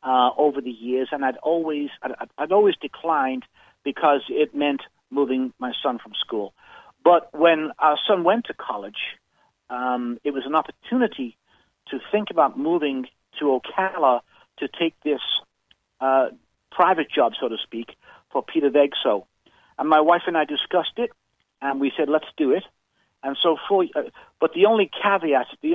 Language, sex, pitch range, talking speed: English, male, 135-170 Hz, 165 wpm